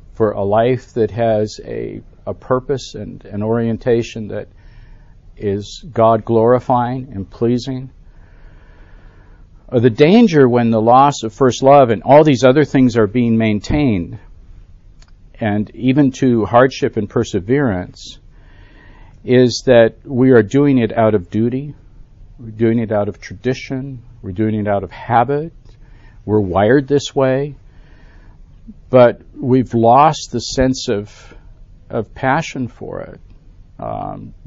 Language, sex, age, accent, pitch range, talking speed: English, male, 50-69, American, 95-125 Hz, 125 wpm